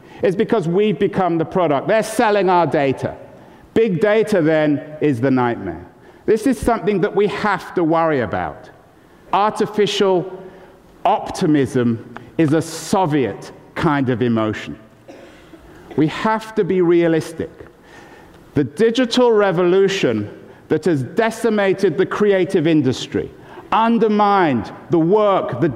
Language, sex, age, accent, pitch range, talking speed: English, male, 50-69, British, 160-210 Hz, 120 wpm